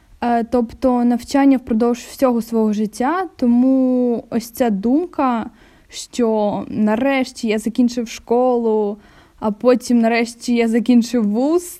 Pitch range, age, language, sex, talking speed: 225-260 Hz, 10-29, Ukrainian, female, 105 wpm